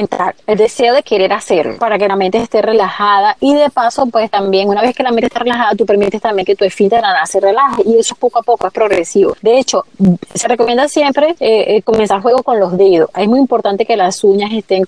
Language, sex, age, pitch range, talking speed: Spanish, female, 30-49, 195-240 Hz, 225 wpm